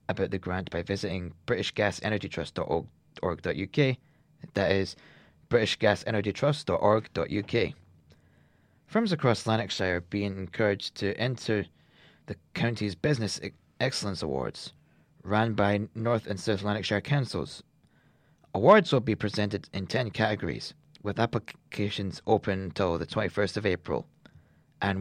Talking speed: 110 wpm